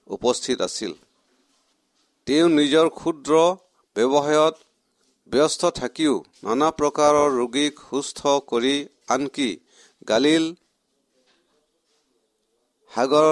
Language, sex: English, male